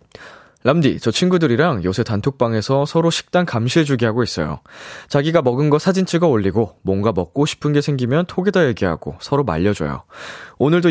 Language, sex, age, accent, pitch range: Korean, male, 20-39, native, 100-150 Hz